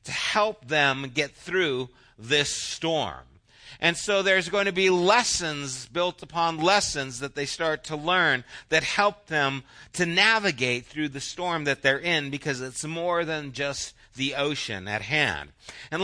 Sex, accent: male, American